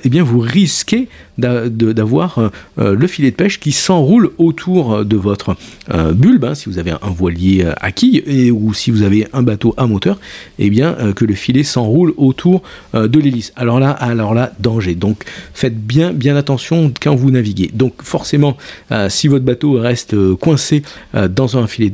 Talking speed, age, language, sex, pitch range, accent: 185 wpm, 50-69, French, male, 105-130 Hz, French